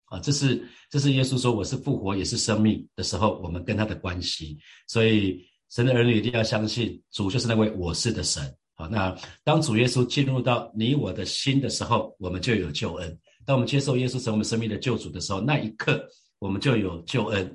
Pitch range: 100-130 Hz